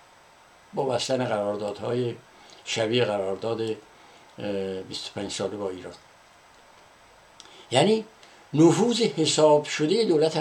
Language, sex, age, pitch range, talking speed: Persian, male, 60-79, 115-140 Hz, 85 wpm